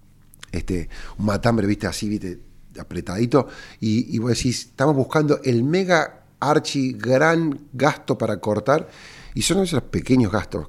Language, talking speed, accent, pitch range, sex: Spanish, 140 wpm, Argentinian, 95-125 Hz, male